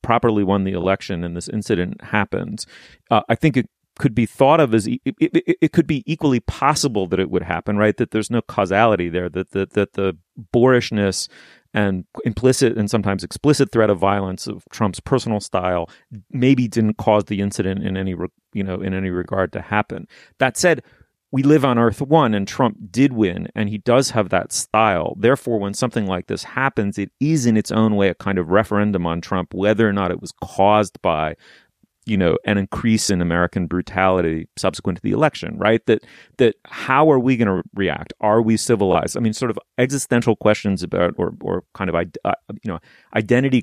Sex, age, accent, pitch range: male, 30-49, American, 95-120 Hz